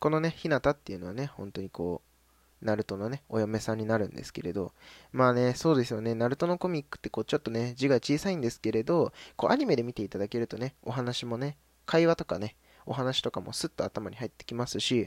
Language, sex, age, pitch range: Japanese, male, 20-39, 95-130 Hz